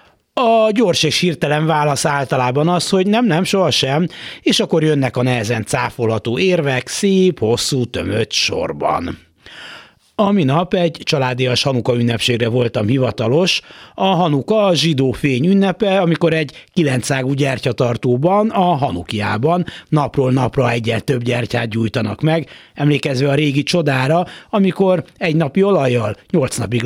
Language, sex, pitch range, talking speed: Hungarian, male, 125-175 Hz, 130 wpm